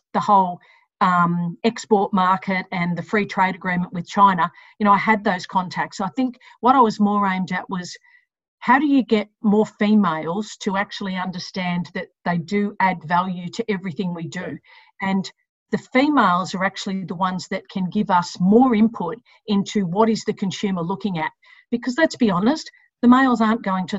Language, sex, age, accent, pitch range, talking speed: English, female, 50-69, Australian, 185-225 Hz, 185 wpm